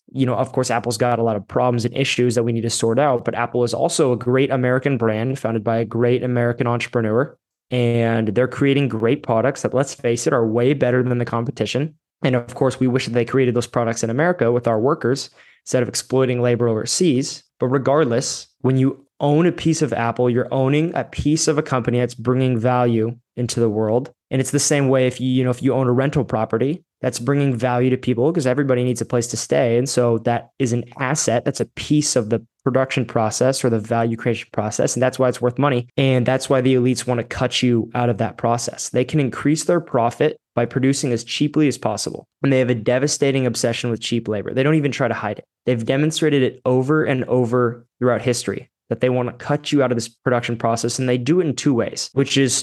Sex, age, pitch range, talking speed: male, 20-39, 120-135 Hz, 235 wpm